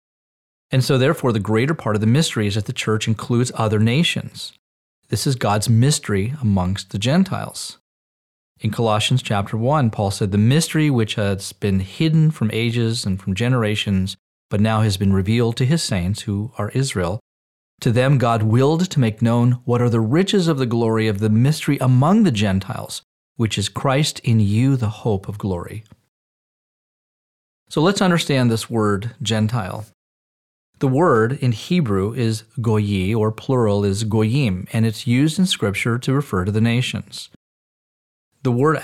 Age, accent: 40-59, American